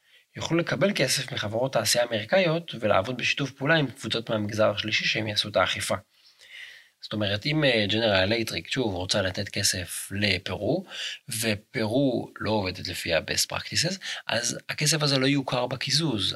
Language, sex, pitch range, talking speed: Hebrew, male, 95-130 Hz, 145 wpm